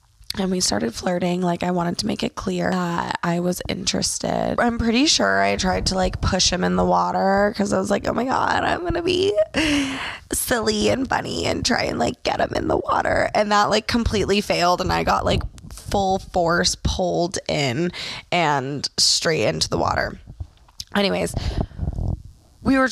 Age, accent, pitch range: 20-39, American, 170-220 Hz